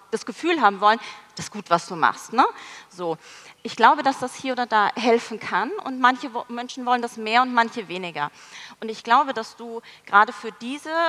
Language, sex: German, female